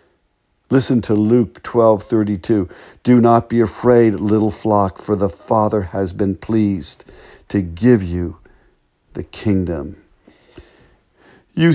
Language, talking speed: English, 115 wpm